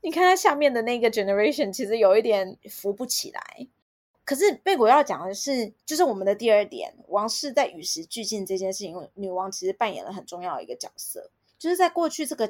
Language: Chinese